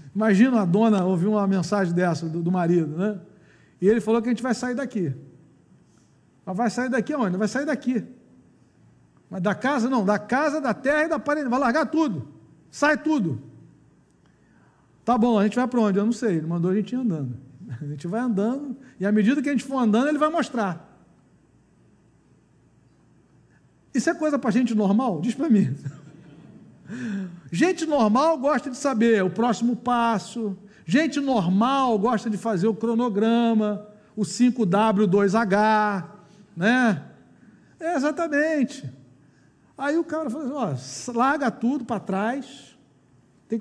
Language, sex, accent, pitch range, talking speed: Portuguese, male, Brazilian, 200-275 Hz, 155 wpm